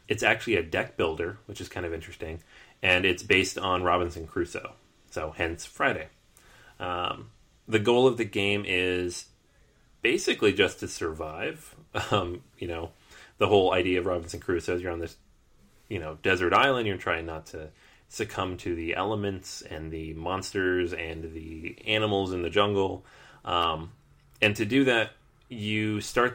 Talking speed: 160 wpm